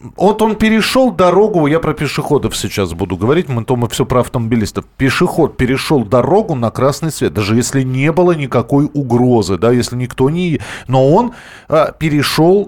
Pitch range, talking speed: 125-185 Hz, 165 wpm